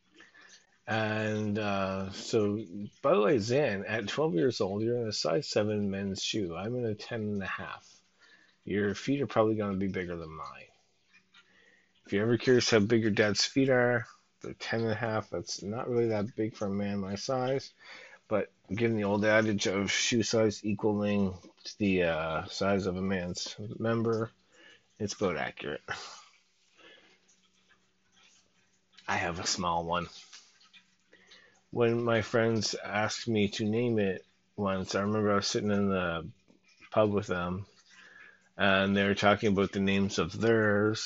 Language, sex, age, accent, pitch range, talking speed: English, male, 30-49, American, 95-110 Hz, 165 wpm